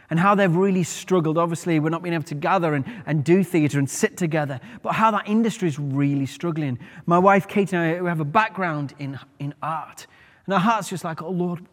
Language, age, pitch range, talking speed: English, 30-49, 145-195 Hz, 225 wpm